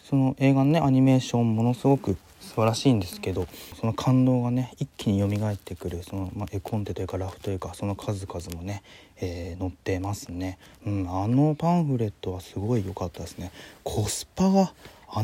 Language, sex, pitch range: Japanese, male, 95-125 Hz